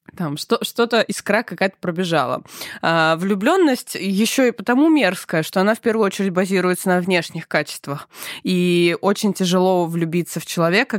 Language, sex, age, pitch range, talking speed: Russian, female, 20-39, 170-215 Hz, 140 wpm